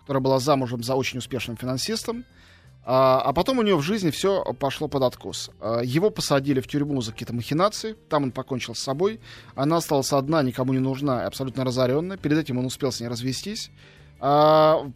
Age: 20-39